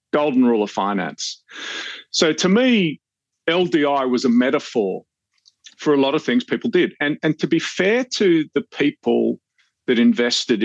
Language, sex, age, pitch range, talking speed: English, male, 50-69, 110-170 Hz, 160 wpm